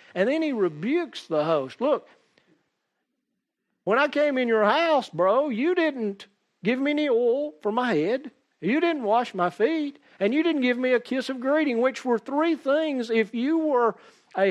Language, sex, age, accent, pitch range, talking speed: English, male, 50-69, American, 210-285 Hz, 185 wpm